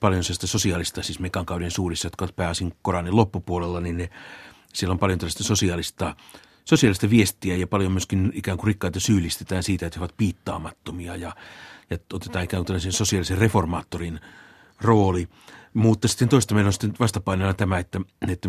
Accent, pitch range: native, 90-105 Hz